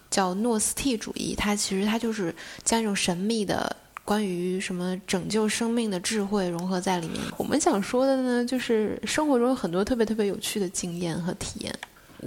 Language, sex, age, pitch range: Chinese, female, 20-39, 185-235 Hz